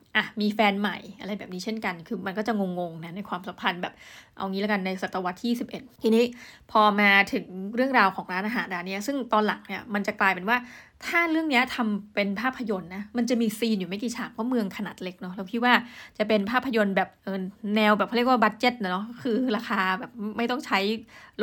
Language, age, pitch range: Thai, 20-39, 200-245 Hz